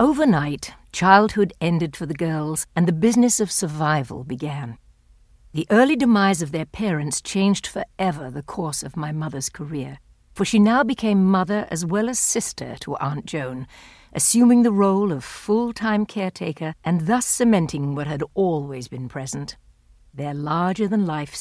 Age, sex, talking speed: 60-79, female, 150 wpm